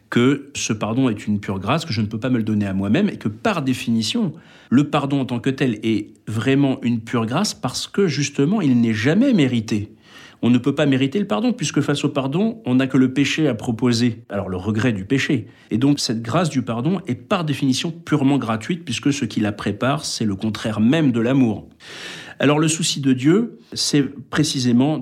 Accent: French